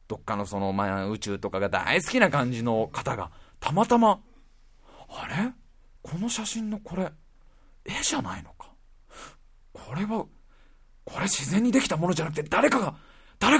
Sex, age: male, 40-59